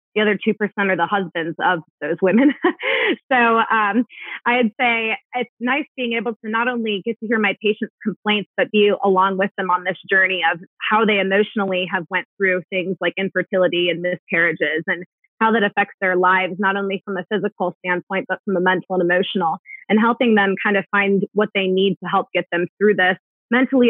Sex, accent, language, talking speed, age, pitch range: female, American, English, 200 wpm, 20-39, 185-220 Hz